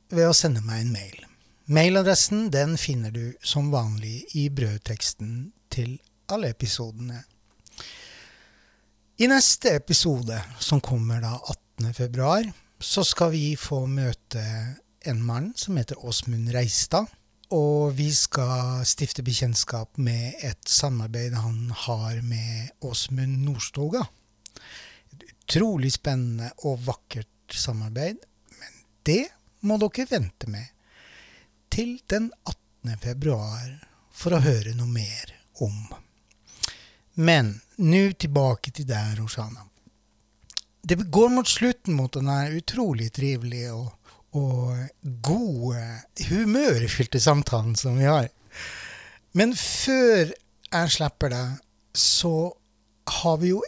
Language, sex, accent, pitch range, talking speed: English, male, Swedish, 115-150 Hz, 110 wpm